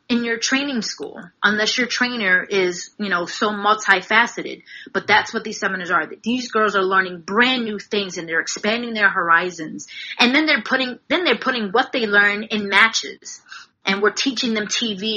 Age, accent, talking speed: 30-49, American, 185 wpm